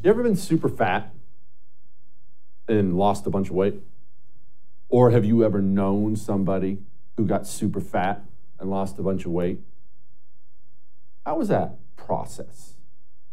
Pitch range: 90-130 Hz